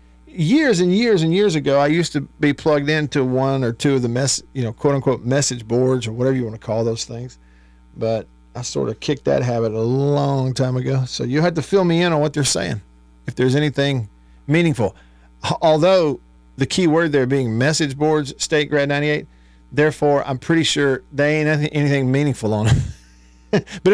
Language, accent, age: English, American, 50-69